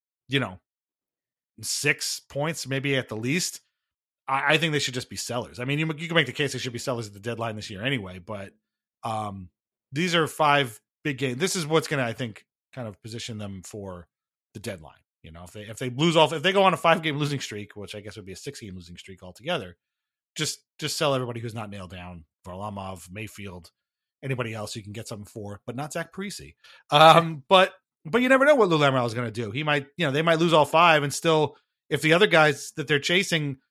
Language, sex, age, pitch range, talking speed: English, male, 30-49, 105-155 Hz, 240 wpm